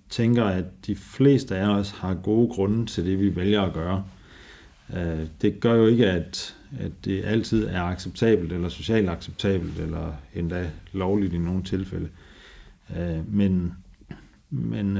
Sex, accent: male, native